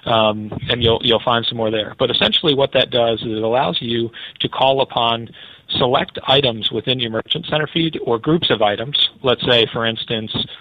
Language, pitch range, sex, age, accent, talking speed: English, 115-140 Hz, male, 40-59, American, 200 wpm